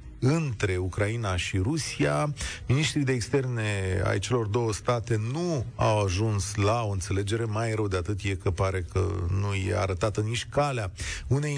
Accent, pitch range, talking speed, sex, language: native, 100-145 Hz, 160 wpm, male, Romanian